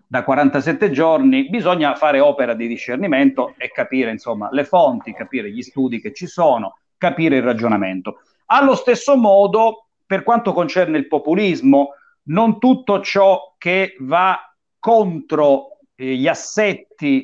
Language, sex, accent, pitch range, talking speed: Italian, male, native, 140-225 Hz, 135 wpm